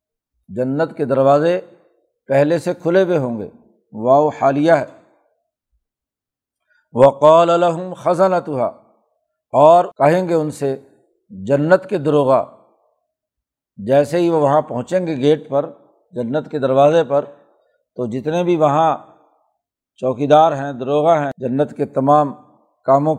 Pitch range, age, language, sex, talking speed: 140-165 Hz, 60-79, Urdu, male, 120 wpm